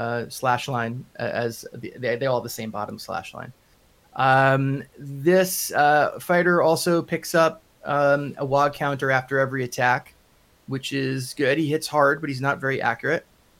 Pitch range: 120-150 Hz